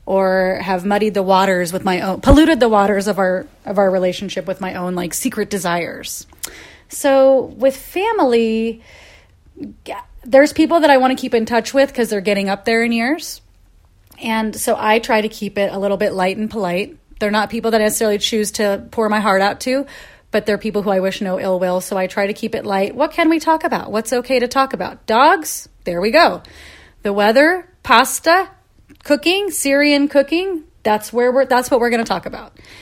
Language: English